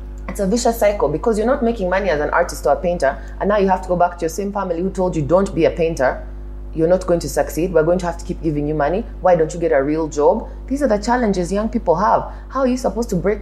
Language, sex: English, female